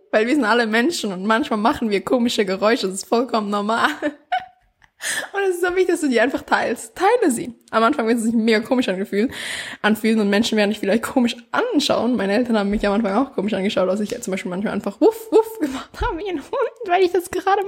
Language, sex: German, female